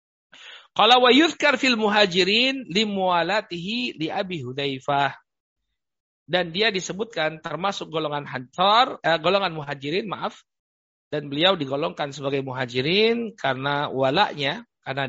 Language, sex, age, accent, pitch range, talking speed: Indonesian, male, 50-69, native, 120-160 Hz, 105 wpm